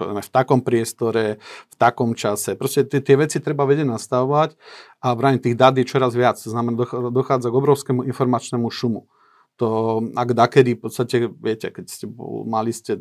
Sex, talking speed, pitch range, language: male, 180 wpm, 110-130 Hz, Slovak